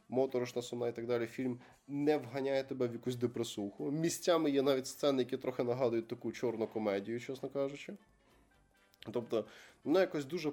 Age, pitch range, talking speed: 20-39, 115-140 Hz, 160 wpm